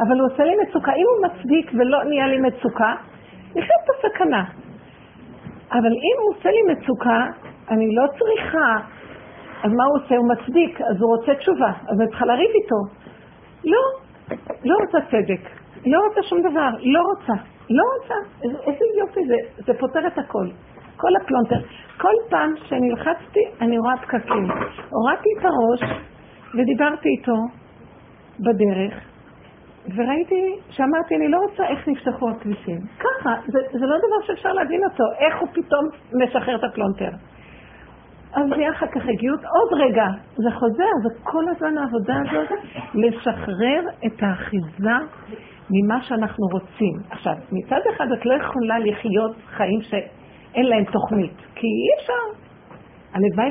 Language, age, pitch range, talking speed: Hebrew, 50-69, 220-325 Hz, 145 wpm